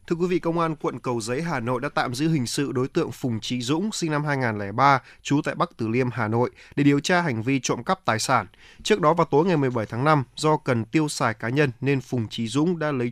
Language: Vietnamese